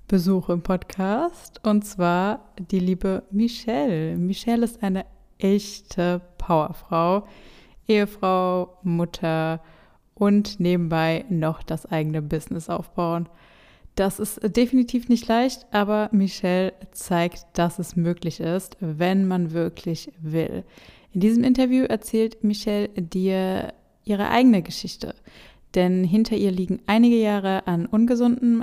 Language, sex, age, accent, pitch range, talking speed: German, female, 20-39, German, 180-215 Hz, 115 wpm